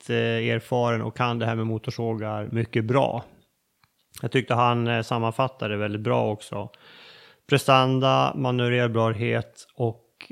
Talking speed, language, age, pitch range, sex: 110 wpm, Swedish, 30-49, 115-135 Hz, male